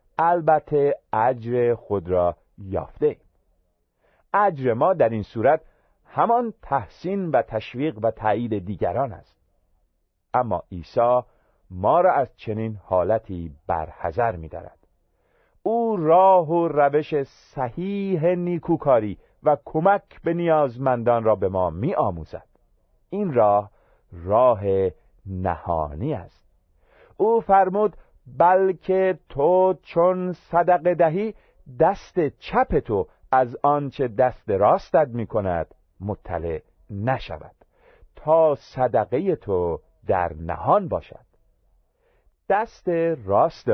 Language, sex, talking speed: Persian, male, 100 wpm